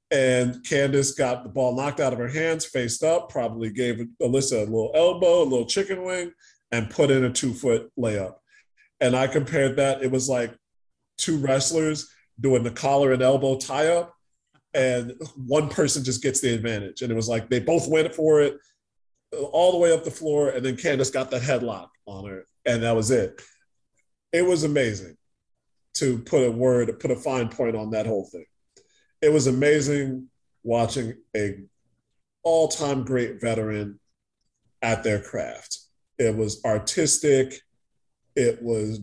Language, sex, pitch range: English, male, 115-145 Hz